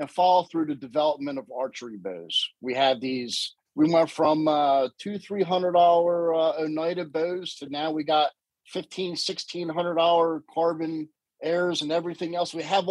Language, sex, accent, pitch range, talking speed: English, male, American, 150-200 Hz, 170 wpm